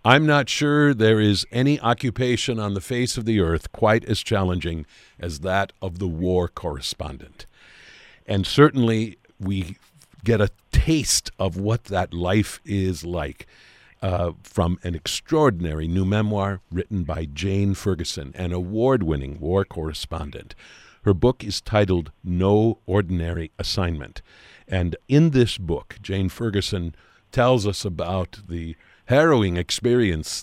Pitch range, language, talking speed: 85-110 Hz, English, 130 wpm